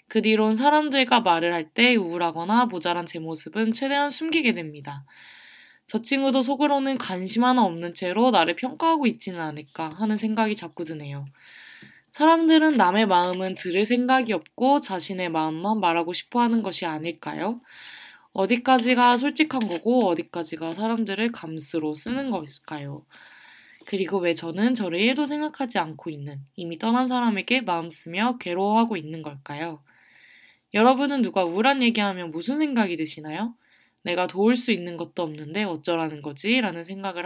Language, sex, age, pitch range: Korean, female, 20-39, 170-245 Hz